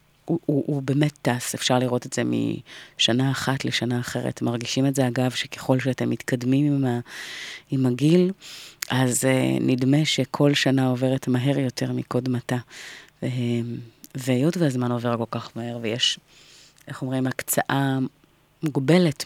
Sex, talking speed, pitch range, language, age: female, 140 wpm, 125-145 Hz, Hebrew, 30-49